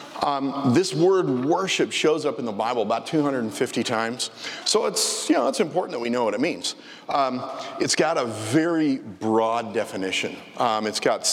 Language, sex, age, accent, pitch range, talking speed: English, male, 40-59, American, 115-160 Hz, 175 wpm